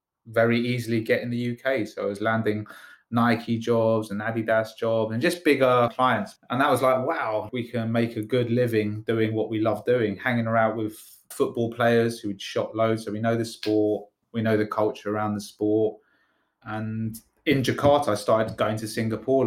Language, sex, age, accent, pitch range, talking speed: English, male, 20-39, British, 105-125 Hz, 195 wpm